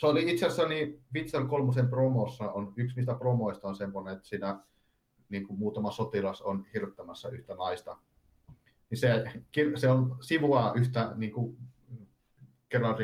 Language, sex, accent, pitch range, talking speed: Finnish, male, native, 105-125 Hz, 145 wpm